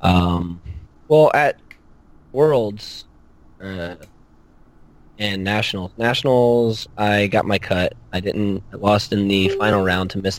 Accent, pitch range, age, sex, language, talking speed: American, 90-110 Hz, 20-39, male, English, 125 wpm